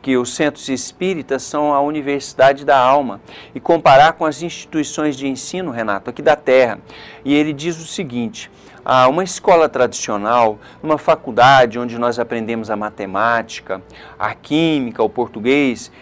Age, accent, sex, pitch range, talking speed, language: 50-69, Brazilian, male, 120-165 Hz, 150 wpm, Portuguese